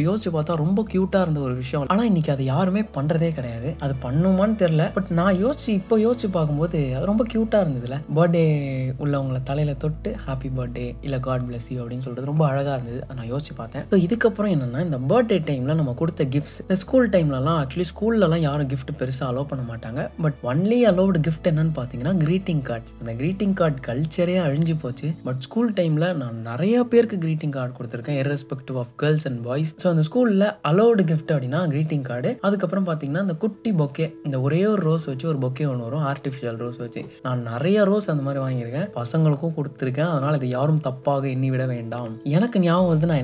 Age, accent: 20-39, native